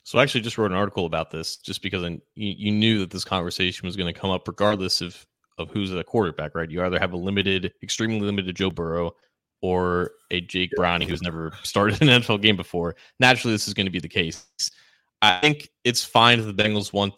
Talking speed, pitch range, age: 225 wpm, 90-110 Hz, 20-39